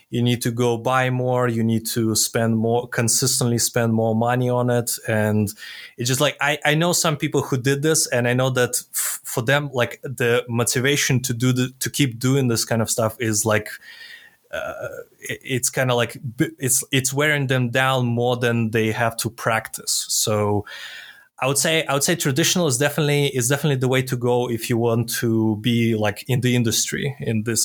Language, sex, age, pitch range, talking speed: English, male, 20-39, 115-135 Hz, 200 wpm